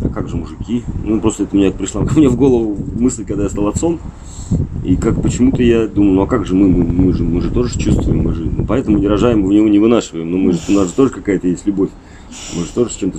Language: Russian